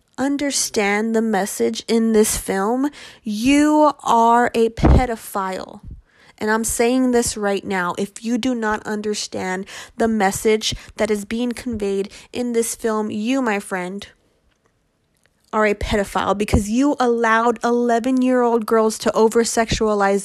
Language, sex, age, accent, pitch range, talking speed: English, female, 20-39, American, 205-250 Hz, 135 wpm